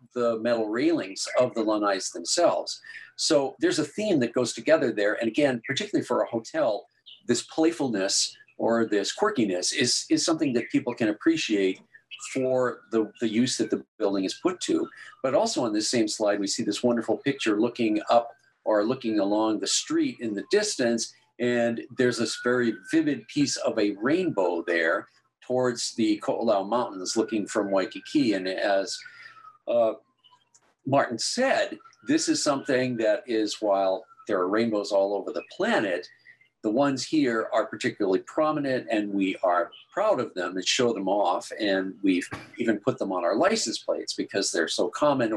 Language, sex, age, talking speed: English, male, 50-69, 170 wpm